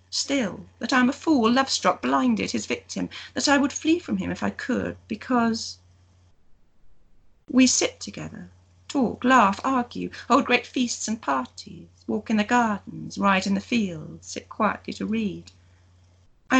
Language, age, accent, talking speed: English, 40-59, British, 160 wpm